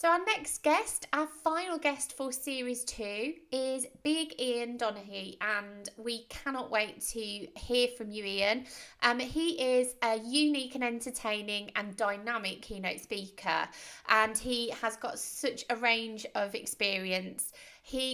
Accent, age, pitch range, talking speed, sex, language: British, 20-39, 210-250 Hz, 145 wpm, female, English